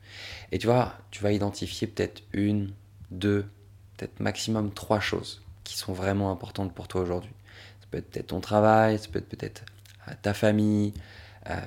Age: 20-39